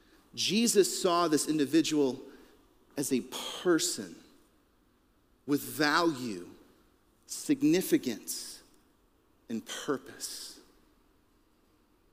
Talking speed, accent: 60 wpm, American